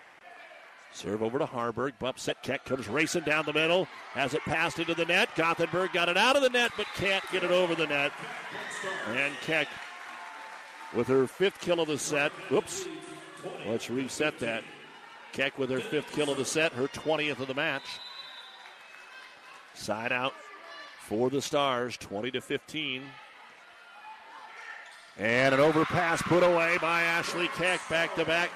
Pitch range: 135-170 Hz